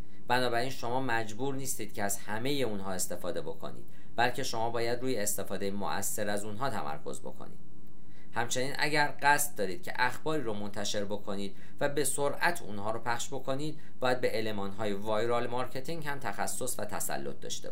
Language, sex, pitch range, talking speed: Persian, male, 100-130 Hz, 155 wpm